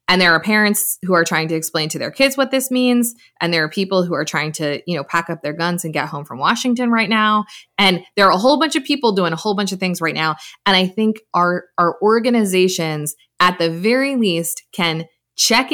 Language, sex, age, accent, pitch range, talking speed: English, female, 20-39, American, 160-215 Hz, 245 wpm